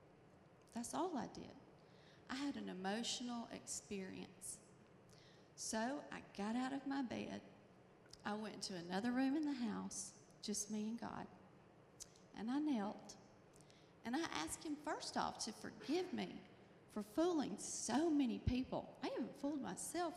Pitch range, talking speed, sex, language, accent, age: 195-255 Hz, 145 wpm, female, English, American, 40-59